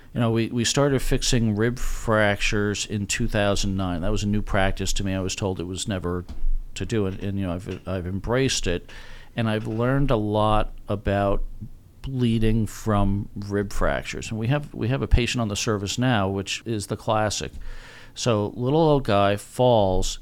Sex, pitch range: male, 105-125 Hz